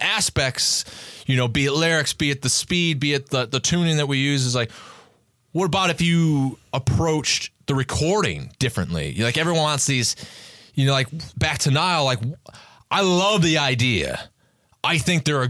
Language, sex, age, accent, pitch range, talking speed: English, male, 30-49, American, 135-175 Hz, 180 wpm